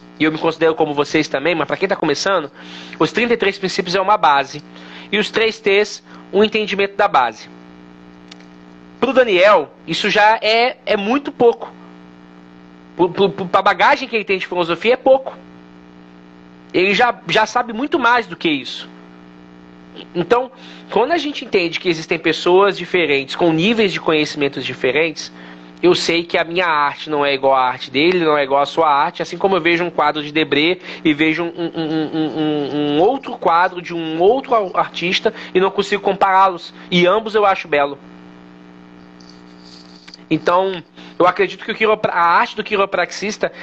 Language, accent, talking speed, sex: Portuguese, Brazilian, 175 wpm, male